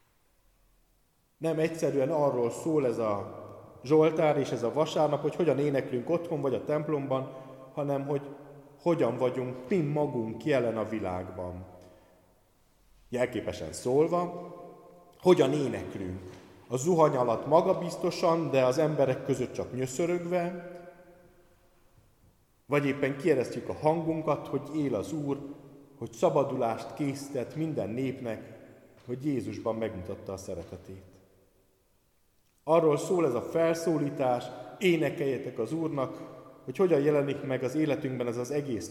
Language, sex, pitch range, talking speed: Hungarian, male, 110-155 Hz, 120 wpm